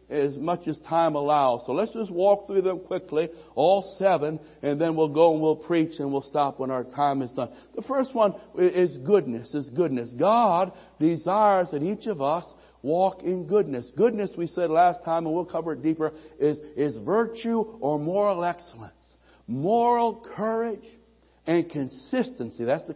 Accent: American